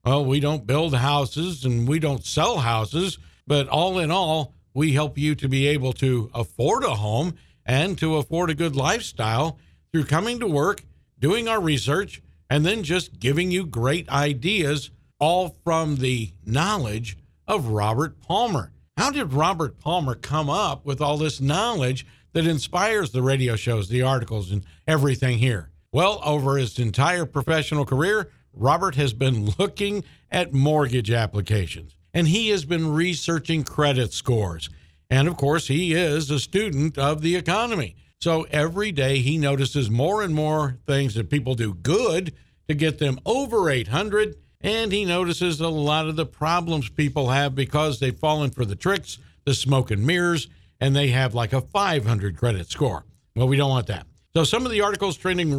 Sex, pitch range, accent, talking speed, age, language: male, 125-165 Hz, American, 170 wpm, 50-69, English